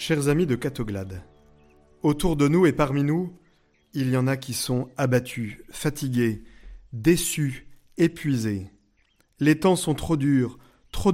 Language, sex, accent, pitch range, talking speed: French, male, French, 120-160 Hz, 140 wpm